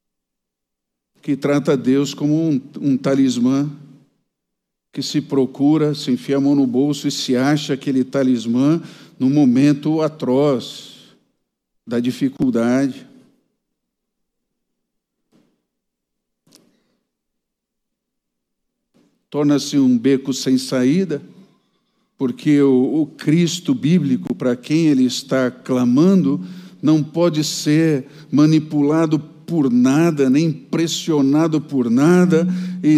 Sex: male